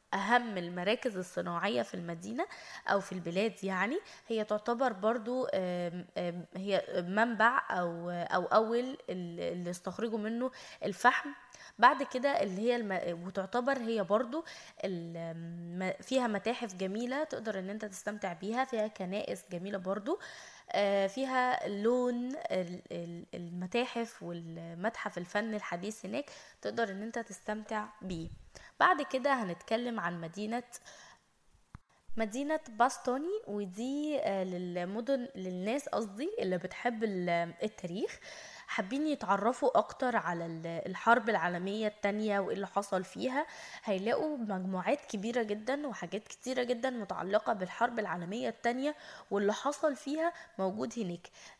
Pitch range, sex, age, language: 185-250 Hz, female, 10-29, Arabic